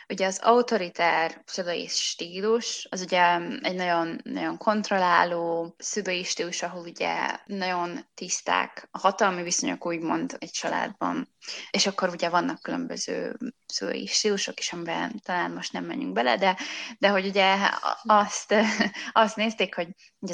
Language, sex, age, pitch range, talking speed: Hungarian, female, 20-39, 170-210 Hz, 135 wpm